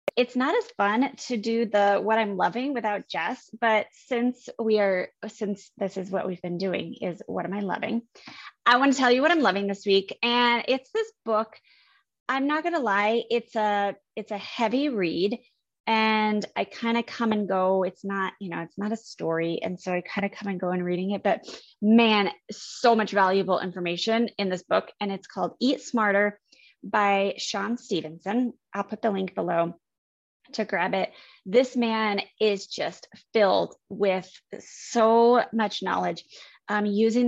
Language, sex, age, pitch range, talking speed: English, female, 20-39, 195-230 Hz, 185 wpm